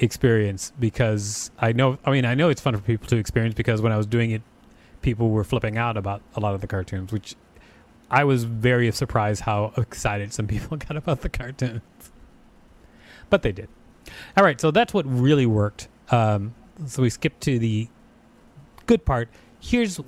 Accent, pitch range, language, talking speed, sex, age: American, 115-135 Hz, English, 185 wpm, male, 30-49